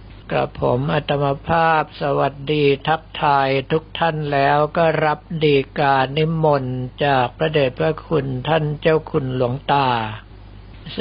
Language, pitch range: Thai, 125-160 Hz